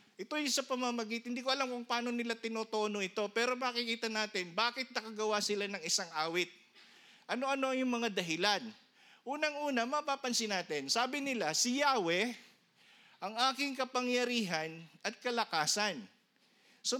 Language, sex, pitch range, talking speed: Filipino, male, 205-260 Hz, 135 wpm